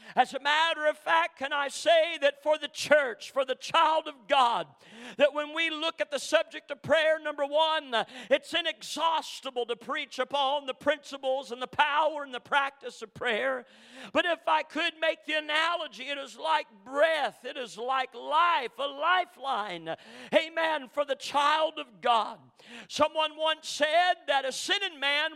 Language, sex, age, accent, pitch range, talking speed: English, male, 50-69, American, 265-320 Hz, 175 wpm